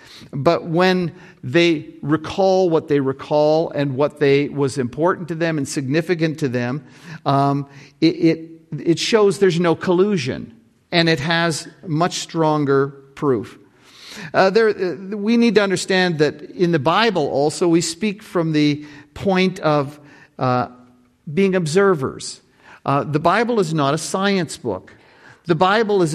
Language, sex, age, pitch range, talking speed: English, male, 50-69, 150-185 Hz, 145 wpm